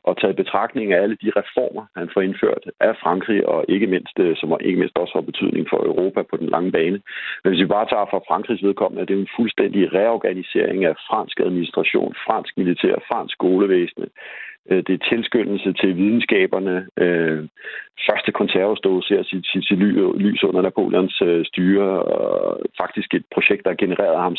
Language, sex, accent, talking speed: Danish, male, native, 165 wpm